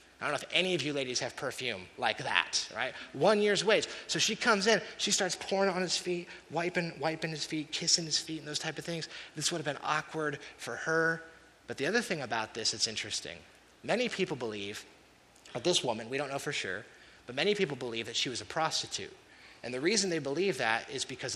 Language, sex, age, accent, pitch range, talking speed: English, male, 30-49, American, 130-165 Hz, 230 wpm